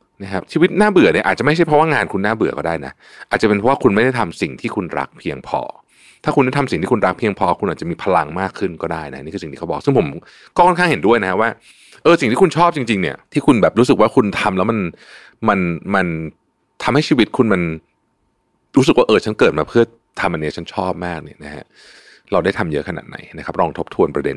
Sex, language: male, Thai